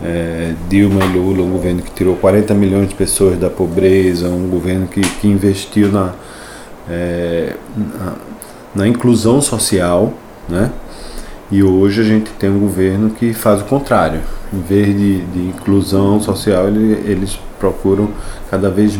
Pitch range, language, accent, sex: 90-105 Hz, Portuguese, Brazilian, male